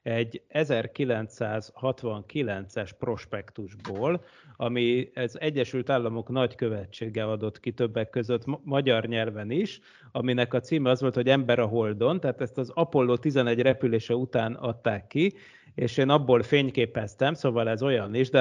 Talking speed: 135 wpm